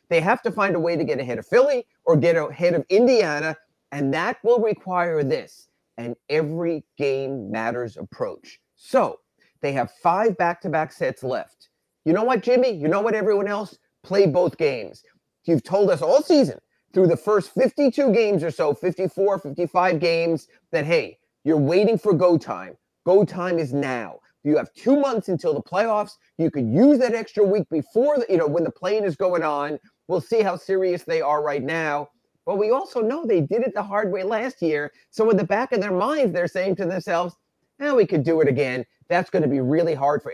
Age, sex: 30-49, male